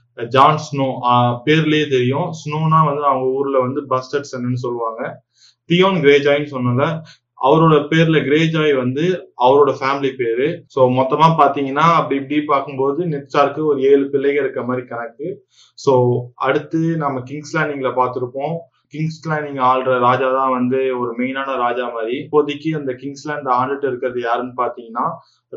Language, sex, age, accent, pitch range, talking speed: Tamil, male, 20-39, native, 125-150 Hz, 135 wpm